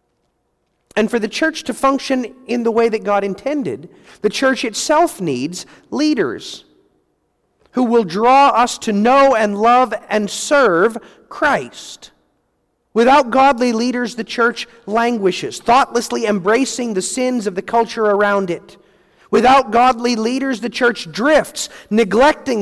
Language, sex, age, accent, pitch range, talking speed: English, male, 40-59, American, 215-270 Hz, 135 wpm